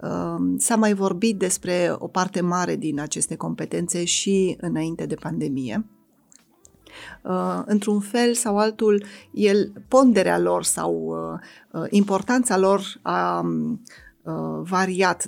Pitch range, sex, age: 155-200 Hz, female, 20-39